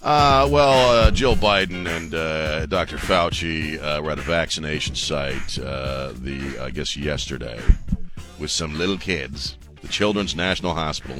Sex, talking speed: male, 150 wpm